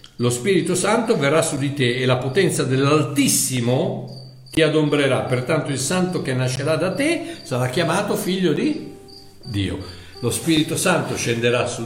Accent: native